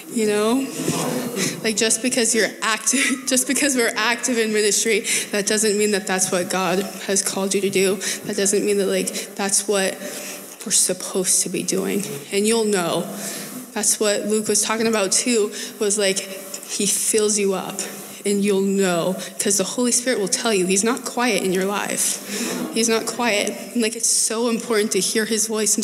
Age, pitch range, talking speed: 20-39, 190-220 Hz, 190 wpm